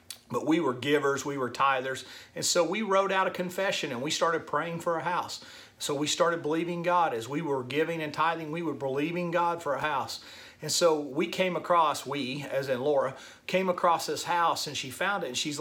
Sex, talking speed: male, 225 wpm